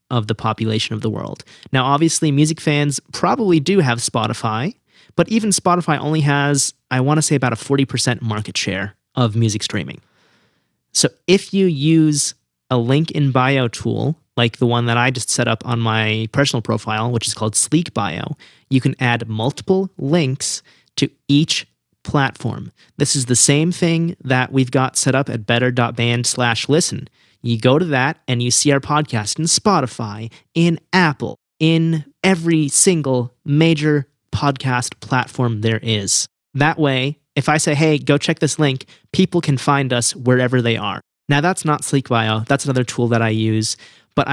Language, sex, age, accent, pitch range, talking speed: English, male, 30-49, American, 120-150 Hz, 175 wpm